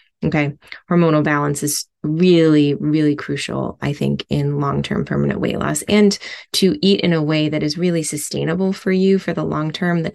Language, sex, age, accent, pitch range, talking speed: English, female, 20-39, American, 150-180 Hz, 190 wpm